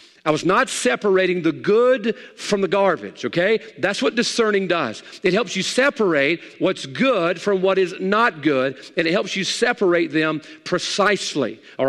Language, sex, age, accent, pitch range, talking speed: English, male, 40-59, American, 160-220 Hz, 165 wpm